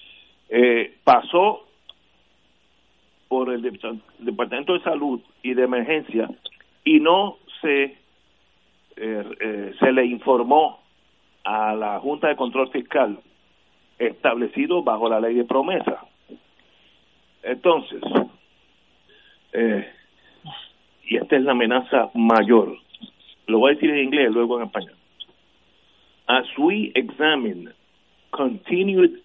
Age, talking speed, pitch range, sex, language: 50-69, 105 wpm, 115-185 Hz, male, Spanish